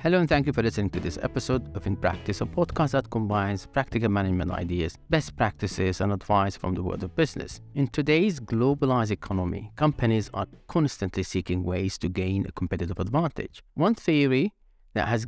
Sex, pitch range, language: male, 95-135 Hz, English